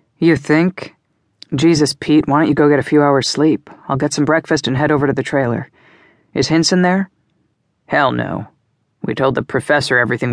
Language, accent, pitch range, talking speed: English, American, 120-145 Hz, 190 wpm